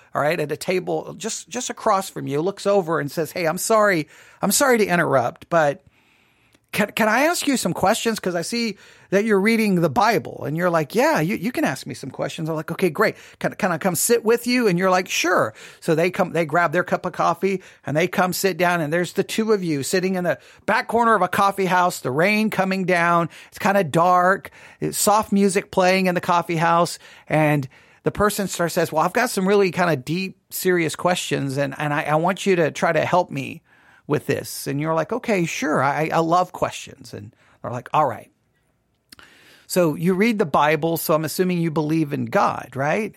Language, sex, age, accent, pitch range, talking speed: English, male, 40-59, American, 155-195 Hz, 225 wpm